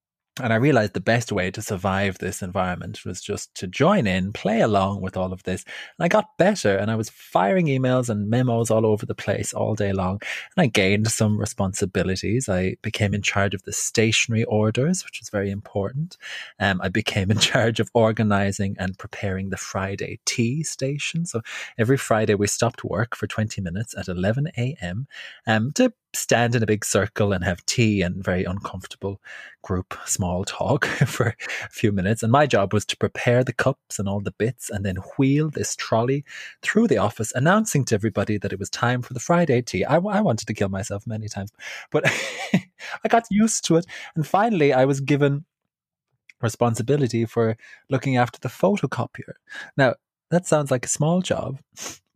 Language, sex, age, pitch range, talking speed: English, male, 30-49, 100-135 Hz, 185 wpm